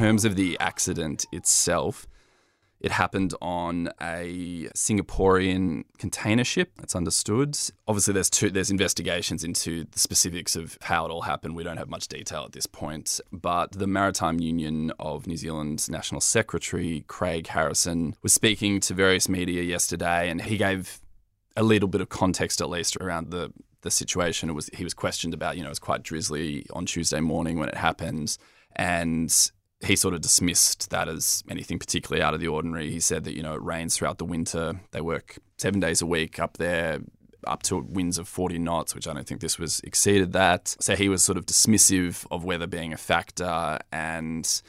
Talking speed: 190 wpm